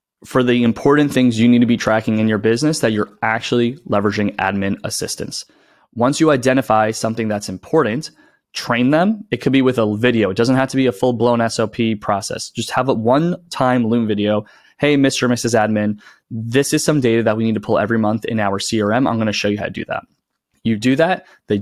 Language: English